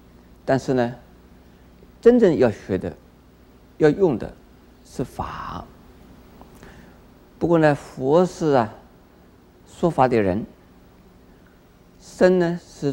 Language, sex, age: Chinese, male, 50-69